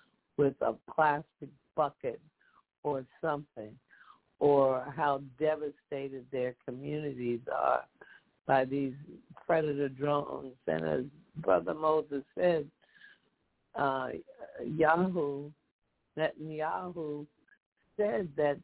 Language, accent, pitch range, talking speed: English, American, 130-155 Hz, 85 wpm